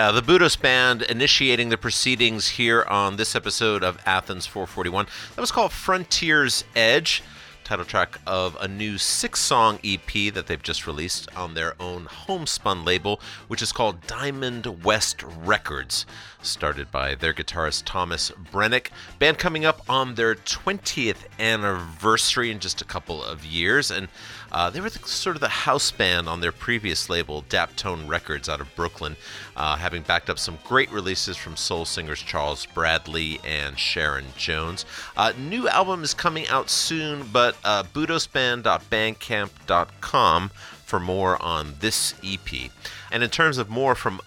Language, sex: English, male